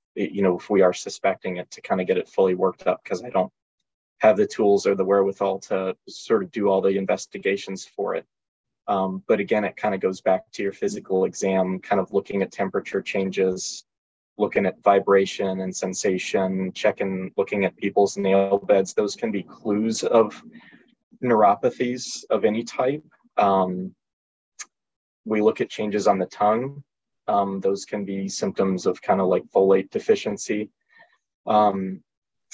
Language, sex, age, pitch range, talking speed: English, male, 20-39, 95-110 Hz, 170 wpm